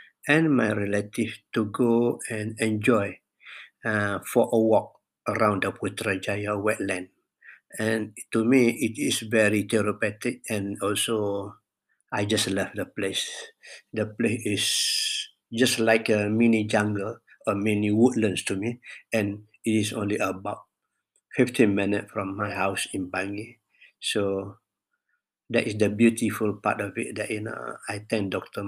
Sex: male